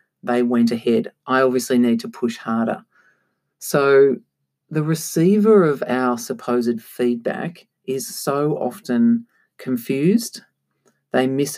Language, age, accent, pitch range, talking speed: English, 40-59, Australian, 120-175 Hz, 115 wpm